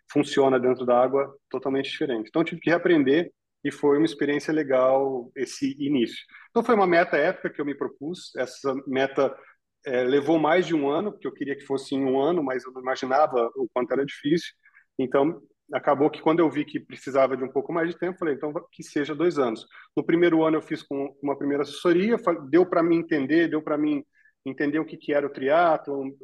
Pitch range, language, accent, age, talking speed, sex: 135-170 Hz, Portuguese, Brazilian, 40-59, 215 wpm, male